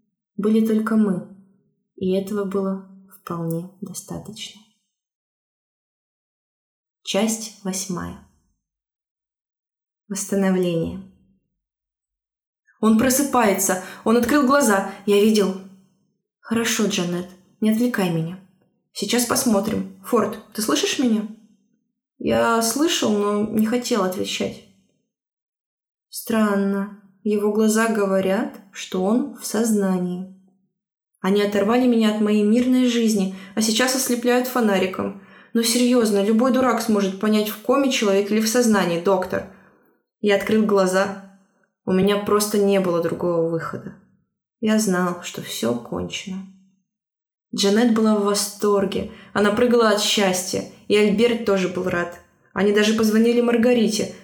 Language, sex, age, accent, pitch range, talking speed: Russian, female, 20-39, native, 190-220 Hz, 110 wpm